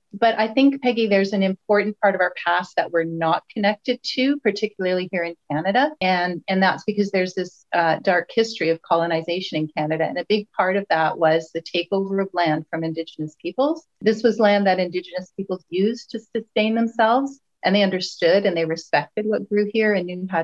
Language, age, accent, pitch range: English, 40-59, American, 170-215 Hz